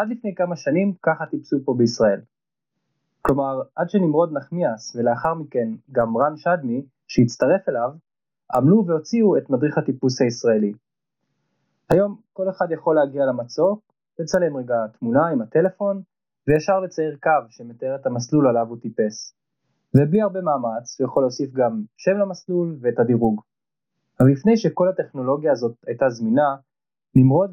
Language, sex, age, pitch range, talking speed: Hebrew, male, 20-39, 130-180 Hz, 140 wpm